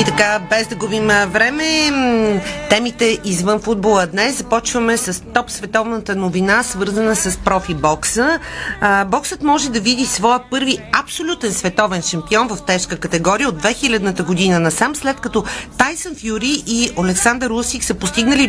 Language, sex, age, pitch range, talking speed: Bulgarian, female, 40-59, 205-255 Hz, 145 wpm